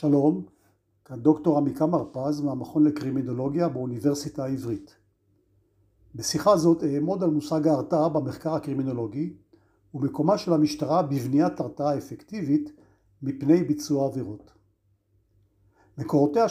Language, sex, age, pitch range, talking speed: Hebrew, male, 50-69, 110-160 Hz, 95 wpm